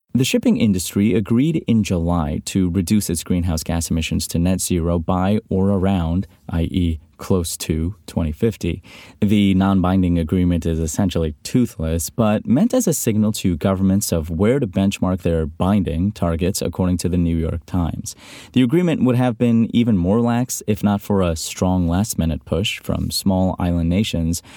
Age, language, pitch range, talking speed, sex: 30-49, English, 85-105 Hz, 170 wpm, male